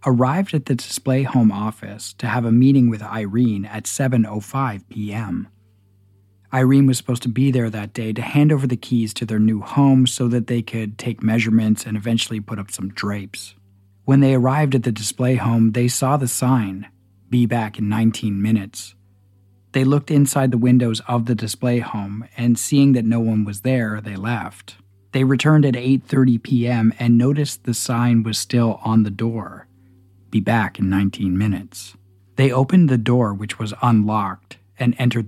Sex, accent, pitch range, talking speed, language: male, American, 100-125 Hz, 180 wpm, English